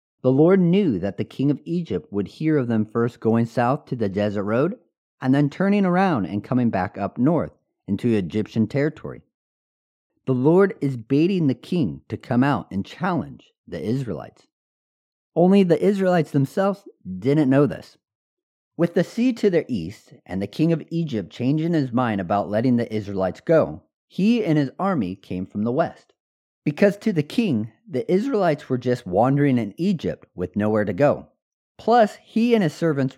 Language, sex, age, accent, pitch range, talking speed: English, male, 40-59, American, 110-175 Hz, 175 wpm